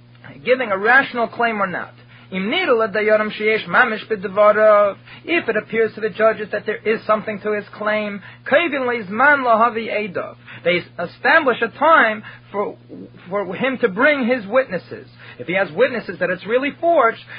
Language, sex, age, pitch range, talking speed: English, male, 30-49, 195-265 Hz, 130 wpm